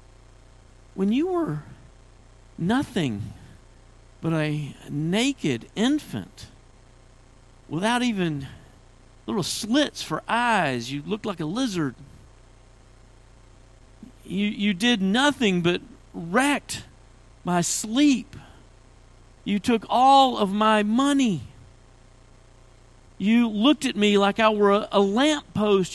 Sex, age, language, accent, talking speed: male, 50-69, English, American, 100 wpm